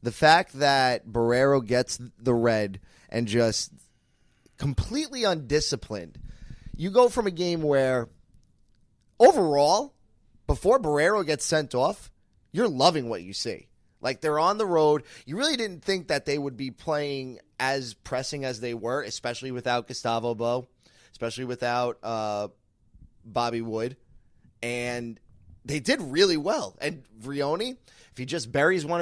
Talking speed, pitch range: 140 wpm, 120-155 Hz